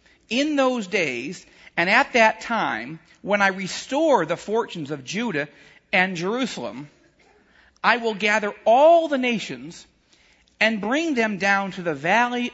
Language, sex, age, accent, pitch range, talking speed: English, male, 40-59, American, 165-245 Hz, 140 wpm